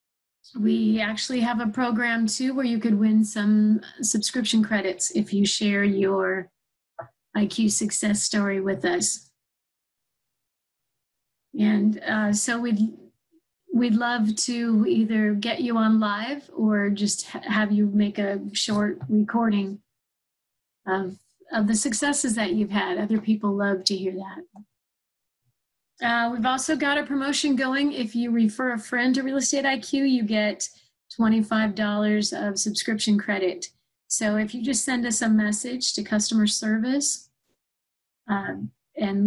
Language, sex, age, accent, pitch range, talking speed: English, female, 30-49, American, 205-235 Hz, 140 wpm